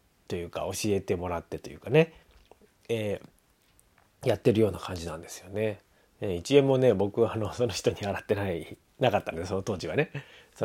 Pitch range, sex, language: 95-130 Hz, male, Japanese